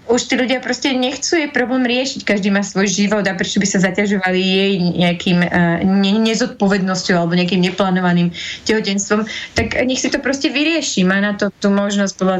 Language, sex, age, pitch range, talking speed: Slovak, female, 20-39, 195-215 Hz, 175 wpm